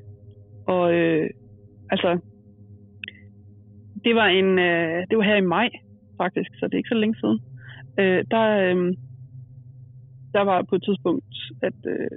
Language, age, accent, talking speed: Danish, 30-49, native, 145 wpm